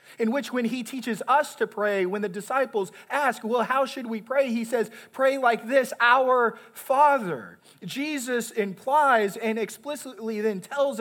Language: English